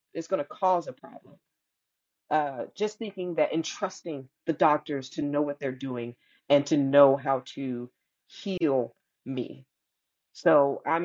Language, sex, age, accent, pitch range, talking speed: English, female, 30-49, American, 145-195 Hz, 145 wpm